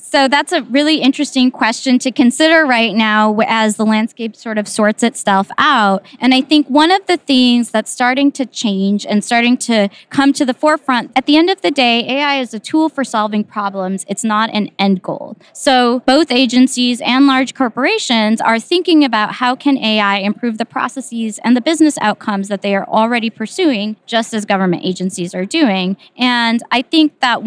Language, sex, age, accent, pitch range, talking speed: English, female, 20-39, American, 200-255 Hz, 190 wpm